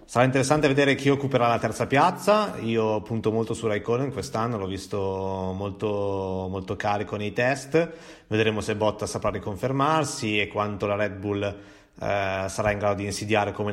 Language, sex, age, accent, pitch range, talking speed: Italian, male, 30-49, native, 105-125 Hz, 165 wpm